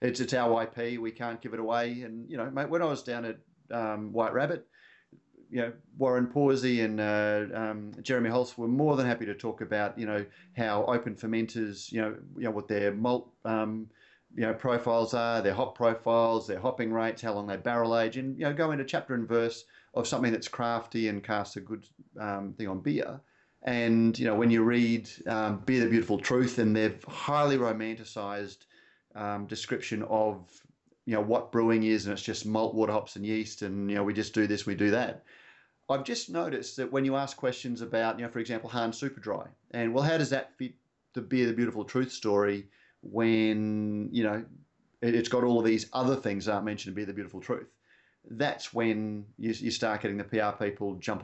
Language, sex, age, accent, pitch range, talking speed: English, male, 30-49, Australian, 105-125 Hz, 215 wpm